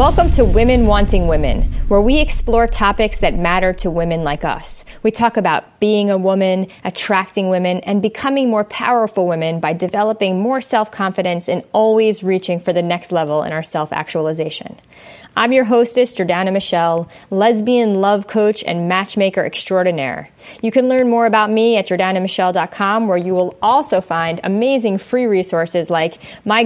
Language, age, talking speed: English, 30-49, 160 wpm